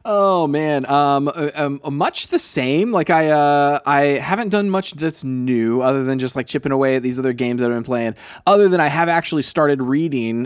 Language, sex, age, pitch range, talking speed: English, male, 20-39, 125-160 Hz, 220 wpm